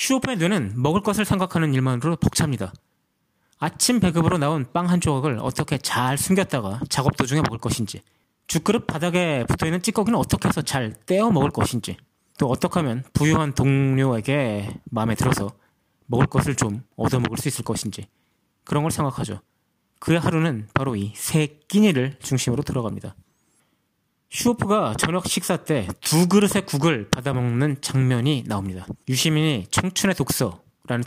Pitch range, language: 120-160 Hz, Korean